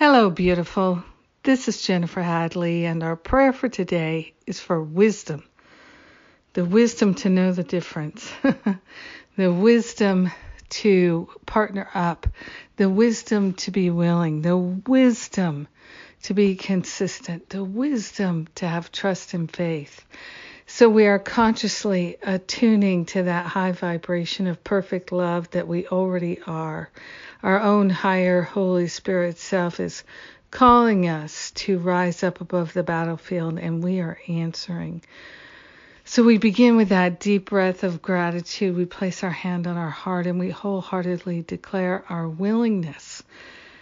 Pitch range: 175-205 Hz